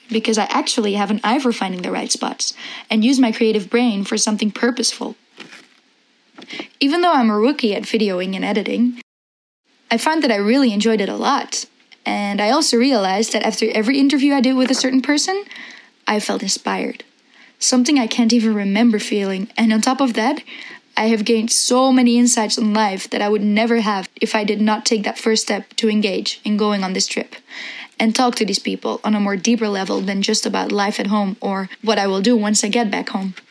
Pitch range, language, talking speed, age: 210-250 Hz, English, 215 wpm, 20-39